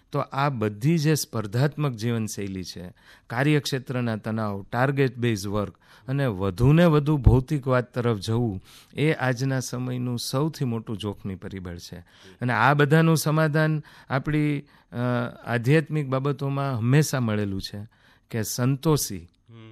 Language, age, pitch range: Gujarati, 40-59, 110-140 Hz